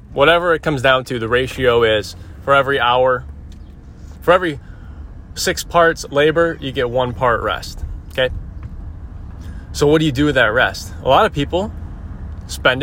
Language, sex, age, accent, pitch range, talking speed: English, male, 20-39, American, 100-150 Hz, 165 wpm